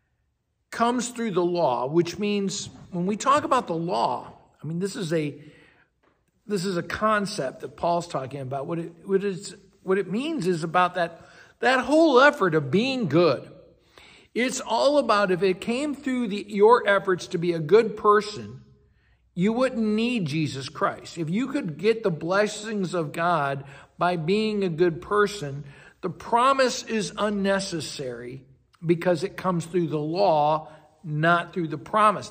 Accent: American